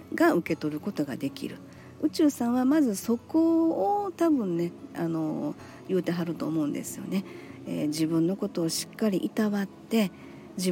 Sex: female